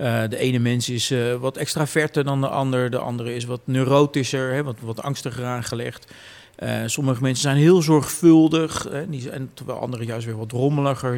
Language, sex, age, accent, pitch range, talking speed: Dutch, male, 50-69, Dutch, 115-145 Hz, 195 wpm